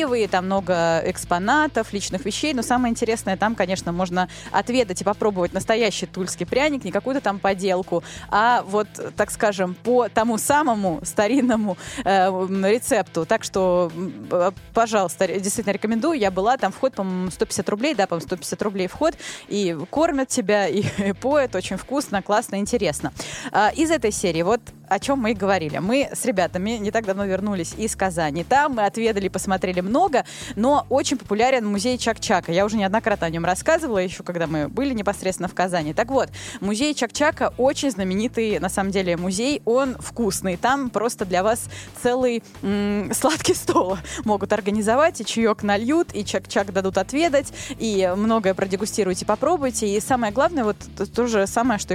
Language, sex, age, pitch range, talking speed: Russian, female, 20-39, 190-245 Hz, 165 wpm